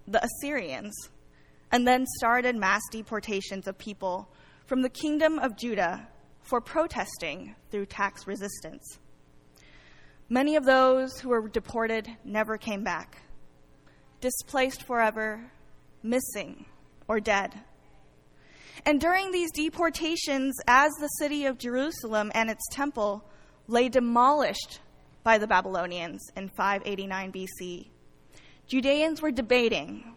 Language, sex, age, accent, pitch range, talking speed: English, female, 10-29, American, 200-270 Hz, 110 wpm